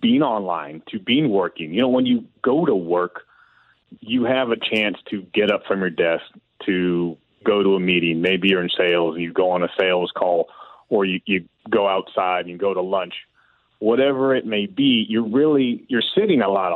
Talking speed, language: 210 wpm, English